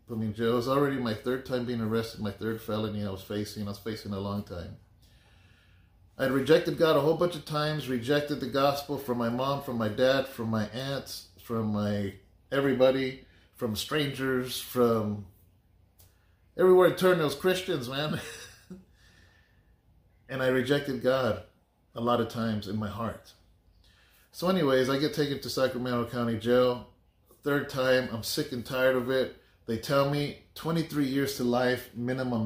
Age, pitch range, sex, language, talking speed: 30-49, 100-135 Hz, male, English, 170 wpm